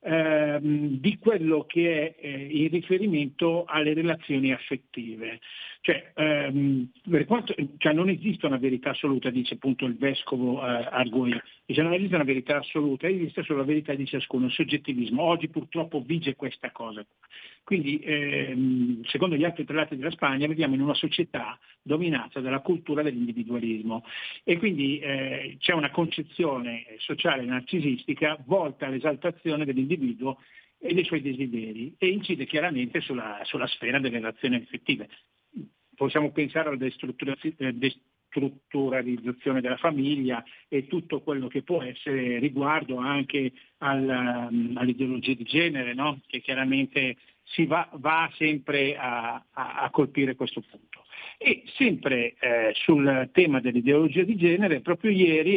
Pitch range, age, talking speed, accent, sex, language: 130-165 Hz, 50-69, 135 wpm, native, male, Italian